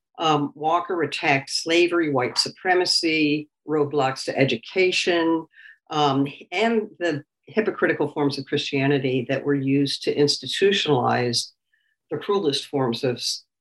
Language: English